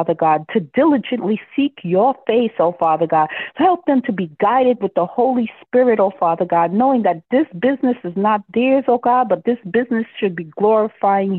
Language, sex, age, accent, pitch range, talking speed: English, female, 40-59, American, 165-230 Hz, 195 wpm